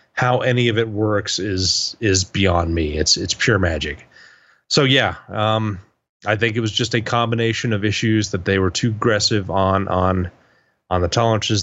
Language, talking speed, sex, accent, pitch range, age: English, 180 wpm, male, American, 100-125 Hz, 30-49